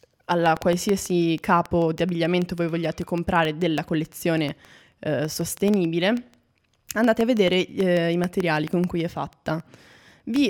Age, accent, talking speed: 20-39, native, 130 wpm